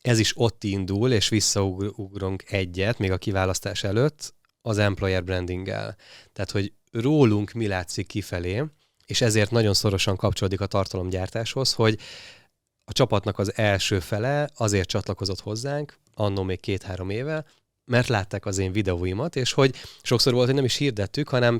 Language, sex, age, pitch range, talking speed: Hungarian, male, 20-39, 100-120 Hz, 150 wpm